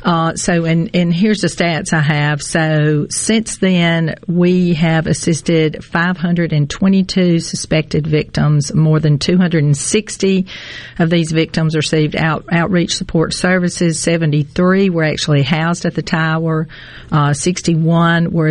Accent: American